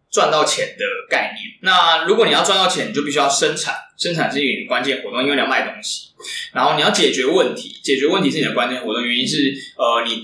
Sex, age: male, 20-39